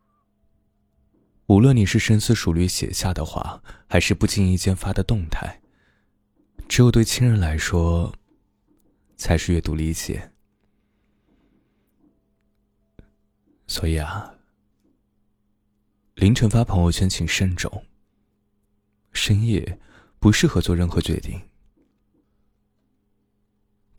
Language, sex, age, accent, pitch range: Chinese, male, 20-39, native, 90-105 Hz